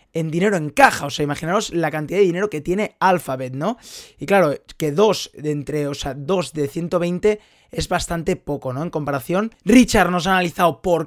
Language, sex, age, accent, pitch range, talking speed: Spanish, male, 30-49, Spanish, 155-210 Hz, 200 wpm